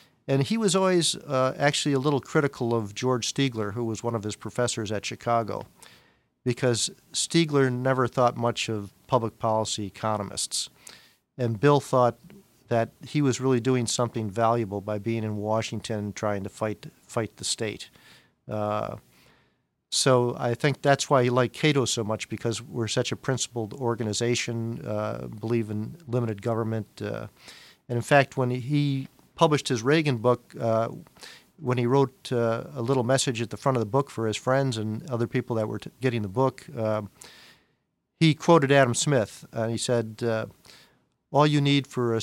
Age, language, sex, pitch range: 50-69, English, male, 110-130 Hz